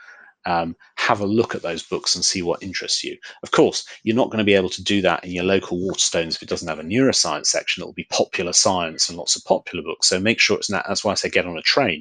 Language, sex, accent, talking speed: English, male, British, 280 wpm